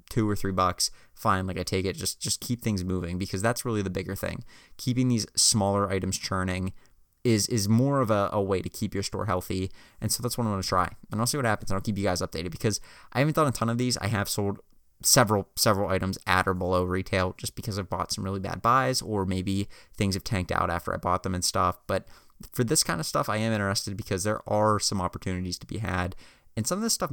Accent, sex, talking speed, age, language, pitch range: American, male, 255 wpm, 20-39, English, 95-120 Hz